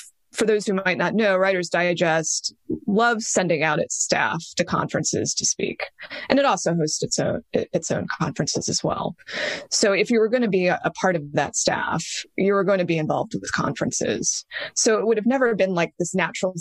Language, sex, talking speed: English, female, 200 wpm